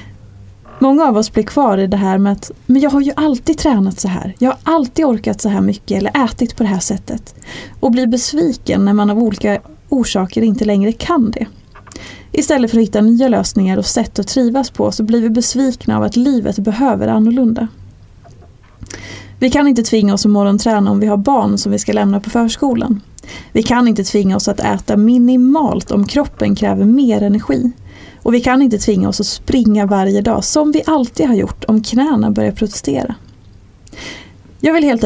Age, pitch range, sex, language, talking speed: 30-49, 195-255 Hz, female, Swedish, 200 wpm